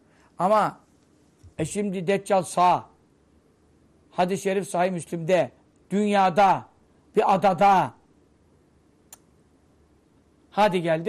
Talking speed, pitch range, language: 75 wpm, 185-230 Hz, Turkish